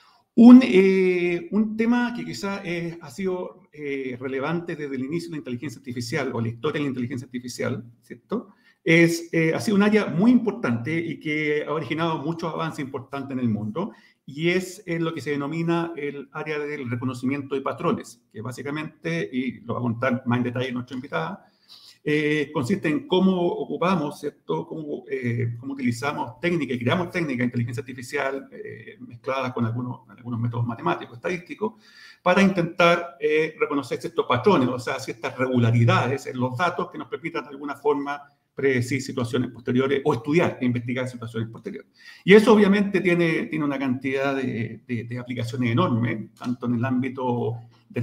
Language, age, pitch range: Spanish, 50-69, 125-170 Hz